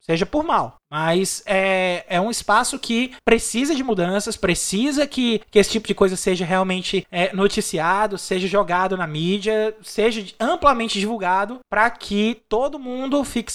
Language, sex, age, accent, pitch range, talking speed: Portuguese, male, 20-39, Brazilian, 205-250 Hz, 150 wpm